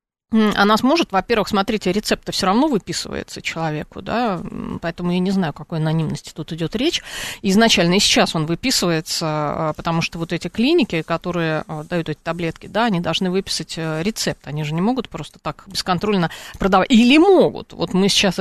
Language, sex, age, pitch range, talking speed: Russian, female, 30-49, 165-220 Hz, 170 wpm